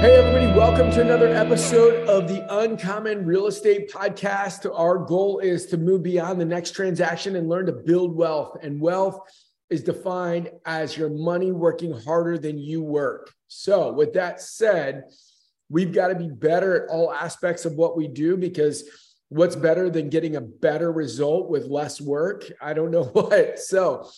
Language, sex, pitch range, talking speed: English, male, 160-185 Hz, 175 wpm